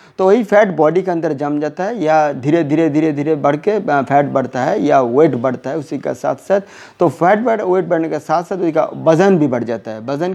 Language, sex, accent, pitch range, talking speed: Hindi, male, native, 155-210 Hz, 245 wpm